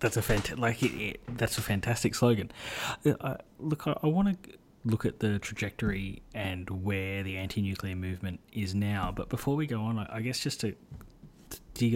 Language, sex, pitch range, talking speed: English, male, 100-120 Hz, 205 wpm